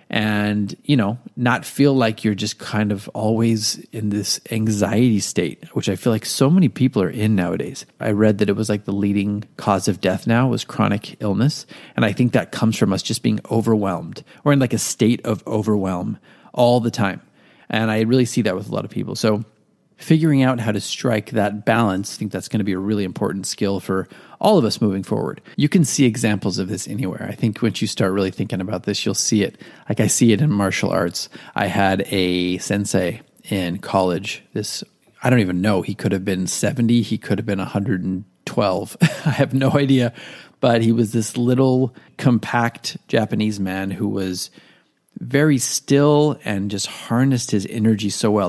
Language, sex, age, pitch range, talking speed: English, male, 30-49, 100-125 Hz, 205 wpm